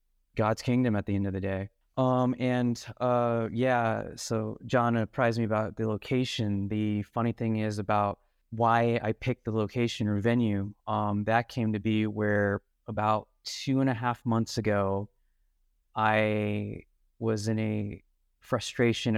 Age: 20-39